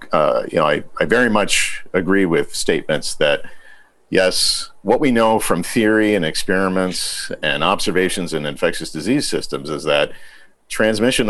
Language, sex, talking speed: English, male, 150 wpm